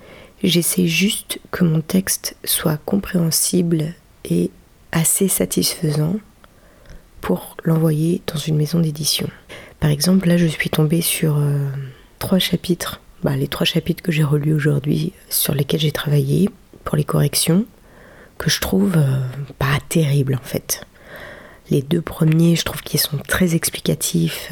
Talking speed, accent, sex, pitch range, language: 140 wpm, French, female, 150-180 Hz, French